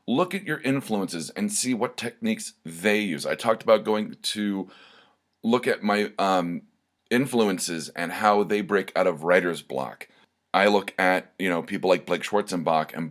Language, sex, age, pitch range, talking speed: English, male, 30-49, 85-105 Hz, 175 wpm